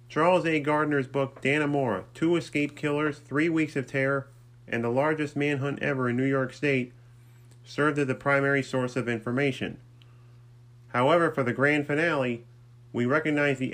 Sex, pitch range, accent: male, 120-140 Hz, American